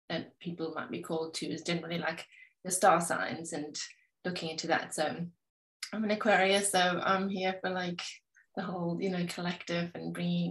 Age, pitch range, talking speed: 20-39, 170-190 Hz, 185 wpm